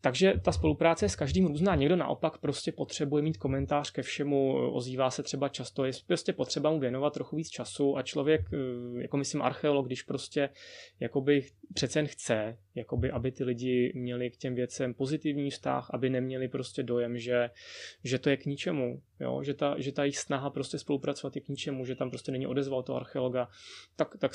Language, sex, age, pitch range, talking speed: Czech, male, 20-39, 130-150 Hz, 195 wpm